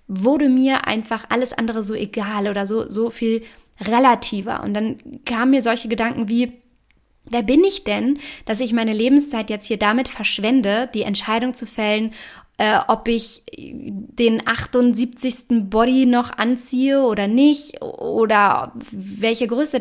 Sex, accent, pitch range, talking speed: female, German, 205-250 Hz, 145 wpm